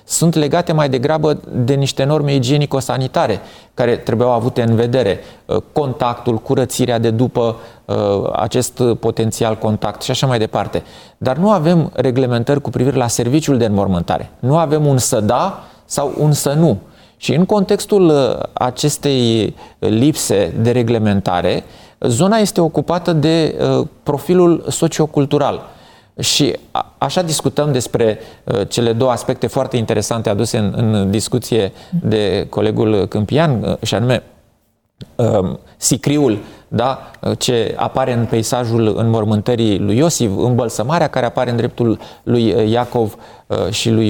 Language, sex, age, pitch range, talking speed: Romanian, male, 30-49, 115-150 Hz, 135 wpm